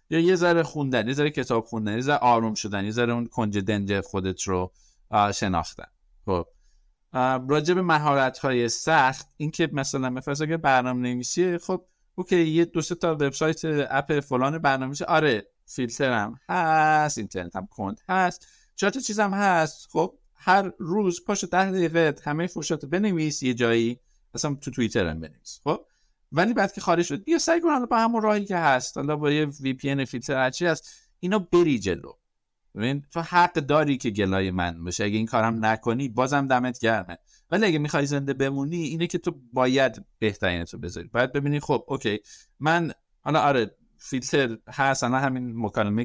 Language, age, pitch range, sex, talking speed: Persian, 50-69, 115-165 Hz, male, 170 wpm